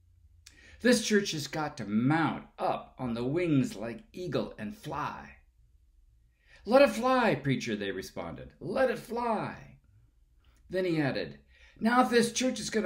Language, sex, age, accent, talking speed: English, male, 60-79, American, 150 wpm